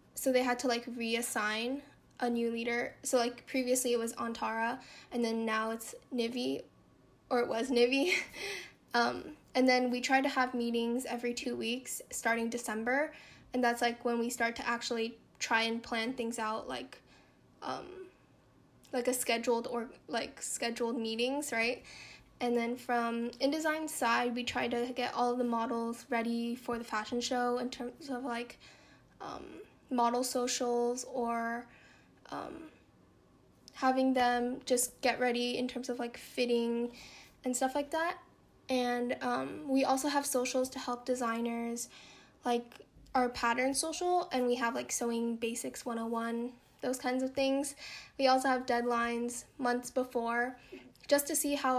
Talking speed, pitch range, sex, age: 155 wpm, 235-260 Hz, female, 10-29